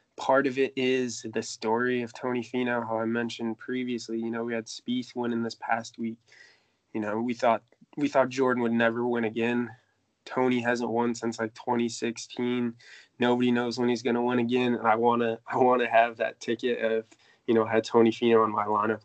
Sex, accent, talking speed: male, American, 200 wpm